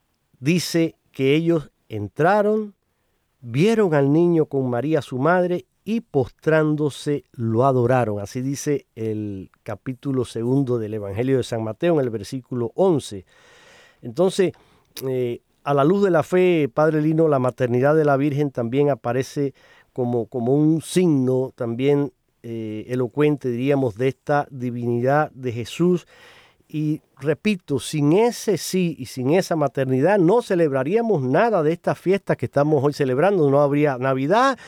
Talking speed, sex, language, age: 140 wpm, male, Spanish, 40-59